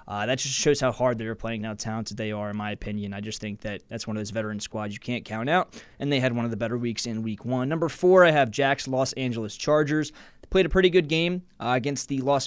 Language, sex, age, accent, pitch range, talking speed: English, male, 20-39, American, 115-145 Hz, 285 wpm